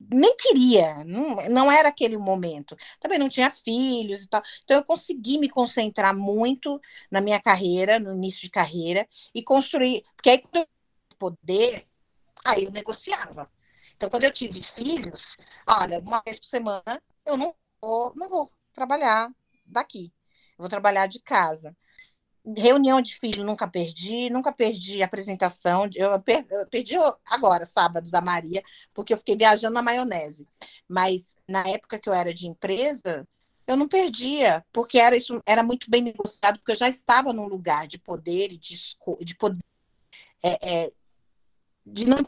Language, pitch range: Portuguese, 185-255 Hz